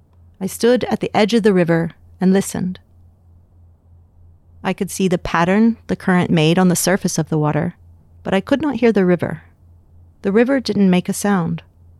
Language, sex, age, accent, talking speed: English, female, 40-59, American, 185 wpm